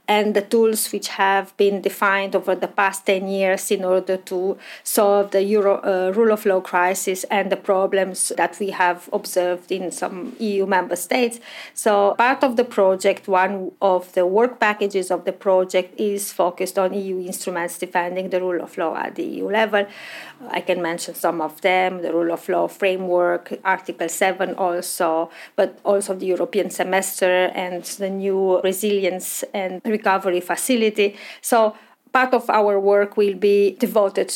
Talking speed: 165 wpm